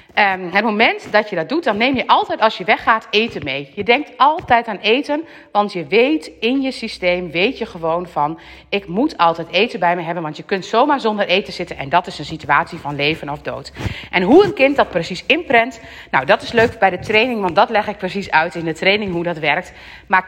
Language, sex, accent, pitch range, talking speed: Dutch, female, Dutch, 175-225 Hz, 240 wpm